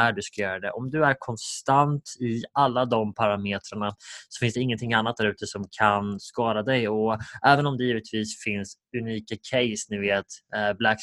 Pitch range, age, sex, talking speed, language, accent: 105-120 Hz, 20-39, male, 185 wpm, Swedish, Norwegian